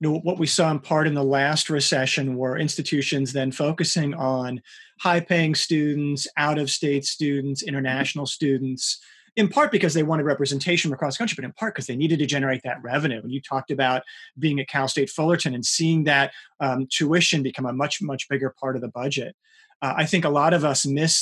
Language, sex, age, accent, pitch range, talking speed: English, male, 30-49, American, 135-170 Hz, 210 wpm